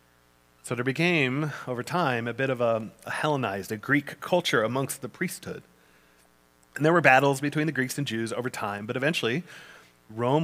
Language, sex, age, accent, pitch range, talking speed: English, male, 30-49, American, 105-140 Hz, 180 wpm